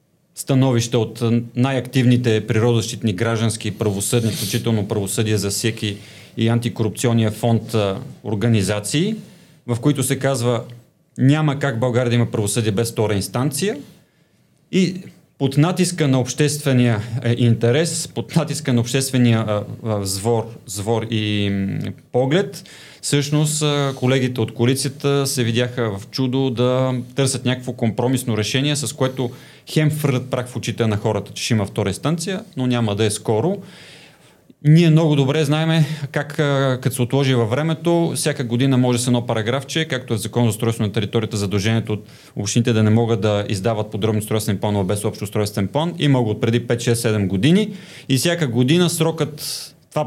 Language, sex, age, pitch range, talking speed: Bulgarian, male, 30-49, 115-140 Hz, 145 wpm